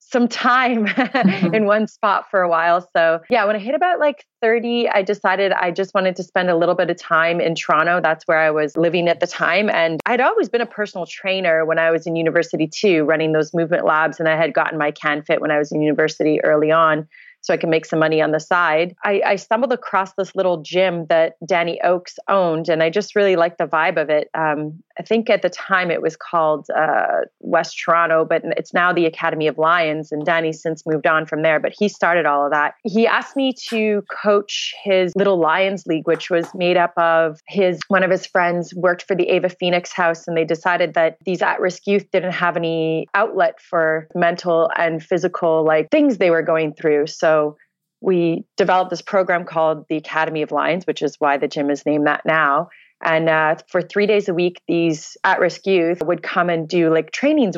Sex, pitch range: female, 160-190 Hz